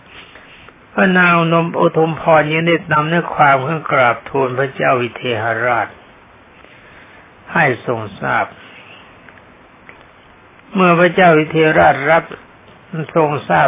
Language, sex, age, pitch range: Thai, male, 60-79, 130-160 Hz